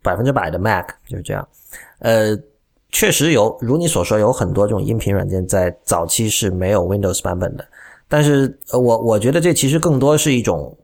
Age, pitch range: 30-49, 100-135 Hz